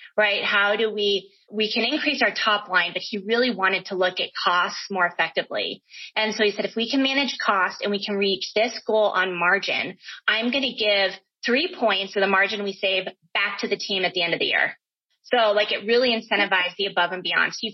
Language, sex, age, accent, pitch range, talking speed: English, female, 20-39, American, 195-235 Hz, 235 wpm